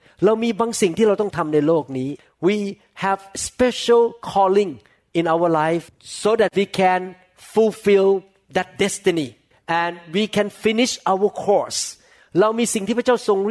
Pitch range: 160-210 Hz